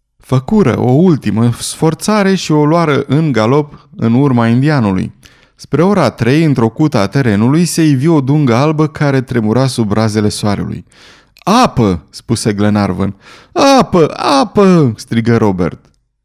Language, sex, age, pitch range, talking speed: Romanian, male, 20-39, 105-145 Hz, 135 wpm